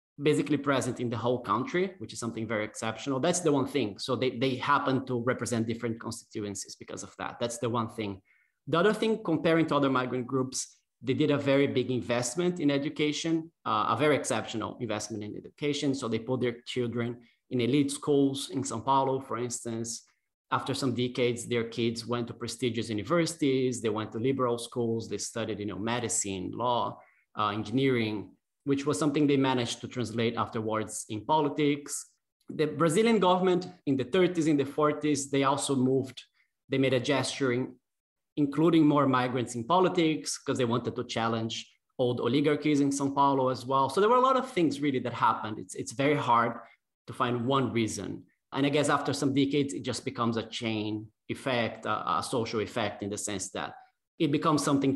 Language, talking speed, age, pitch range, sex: English, 190 wpm, 30-49, 115-145 Hz, male